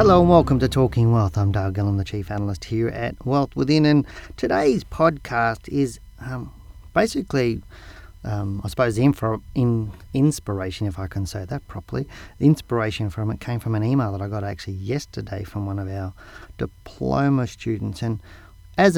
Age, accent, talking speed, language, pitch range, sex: 40-59, Australian, 175 wpm, English, 100-120 Hz, male